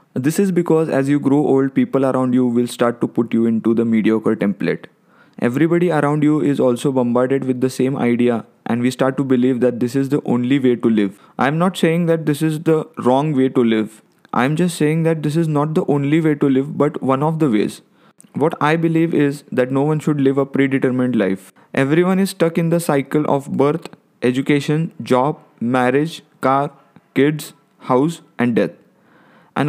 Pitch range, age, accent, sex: 125-155 Hz, 20-39, native, male